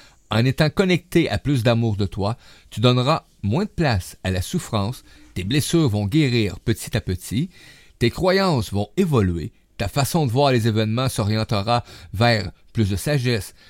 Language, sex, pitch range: French, male, 105-150 Hz